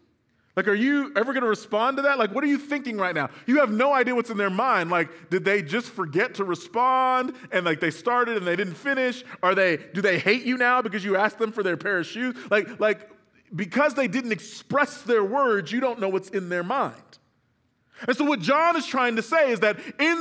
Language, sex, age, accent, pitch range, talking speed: English, male, 30-49, American, 165-250 Hz, 240 wpm